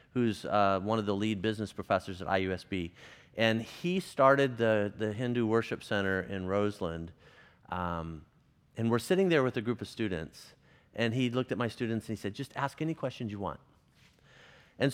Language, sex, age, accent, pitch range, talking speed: English, male, 40-59, American, 110-155 Hz, 185 wpm